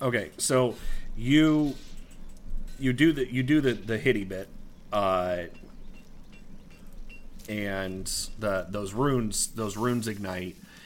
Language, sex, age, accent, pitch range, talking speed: English, male, 40-59, American, 95-110 Hz, 110 wpm